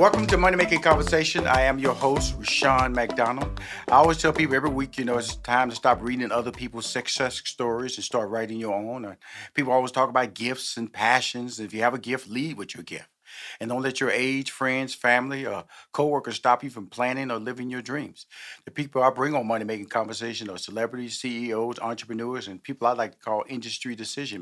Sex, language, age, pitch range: male, English, 40-59, 120-150 Hz